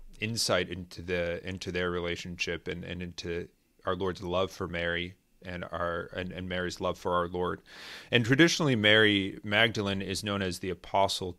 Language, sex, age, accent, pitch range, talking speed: English, male, 30-49, American, 85-100 Hz, 170 wpm